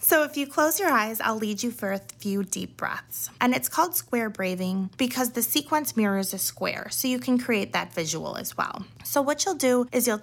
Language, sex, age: English, female, 30-49